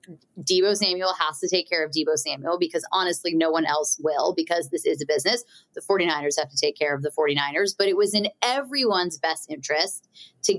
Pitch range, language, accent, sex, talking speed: 165-215 Hz, English, American, female, 210 wpm